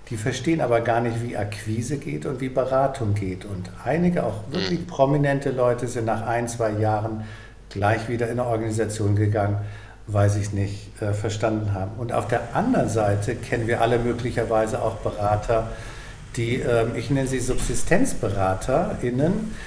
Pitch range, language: 110-130 Hz, German